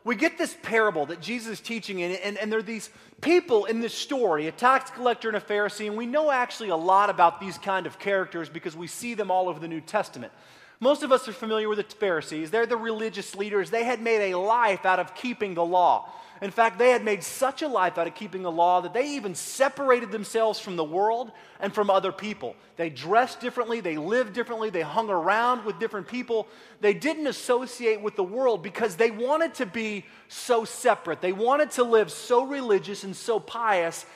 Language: English